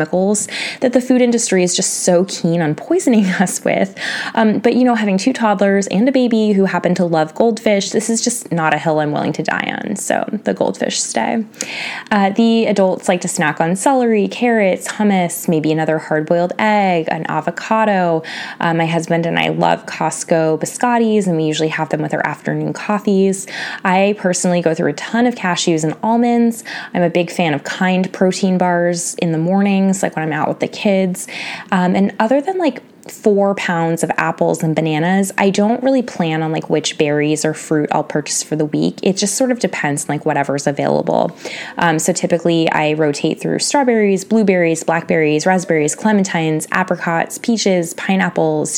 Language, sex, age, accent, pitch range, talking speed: English, female, 20-39, American, 165-215 Hz, 190 wpm